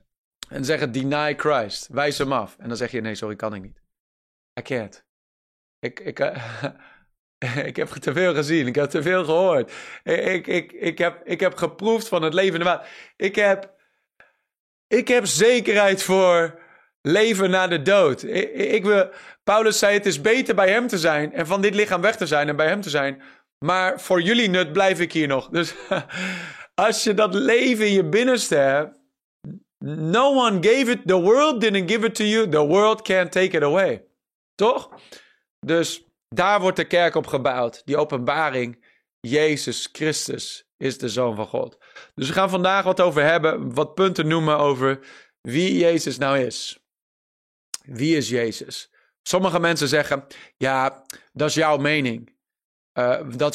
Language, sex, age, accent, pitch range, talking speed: English, male, 30-49, Dutch, 145-195 Hz, 175 wpm